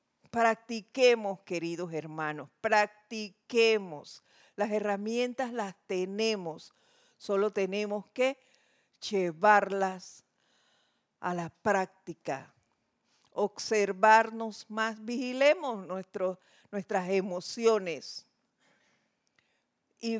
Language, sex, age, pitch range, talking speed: Spanish, female, 50-69, 180-225 Hz, 65 wpm